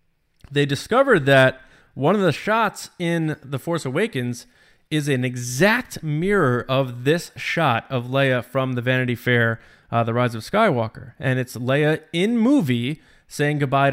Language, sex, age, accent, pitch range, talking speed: English, male, 20-39, American, 130-170 Hz, 155 wpm